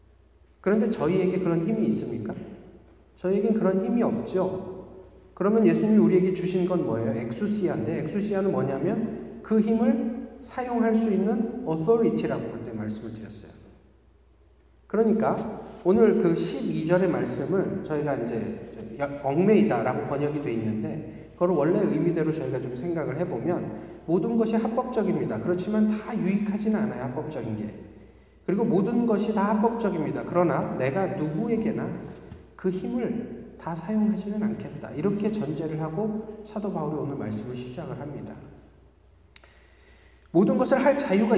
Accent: native